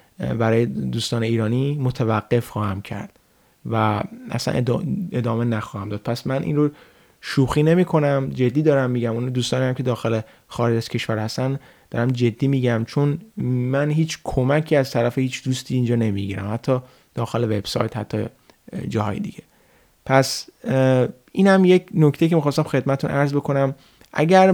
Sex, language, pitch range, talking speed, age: male, Persian, 120-150 Hz, 140 wpm, 30-49